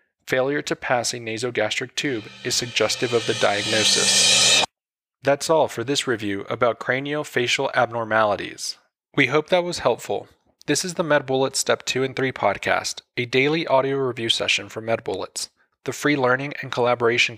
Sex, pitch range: male, 120-145 Hz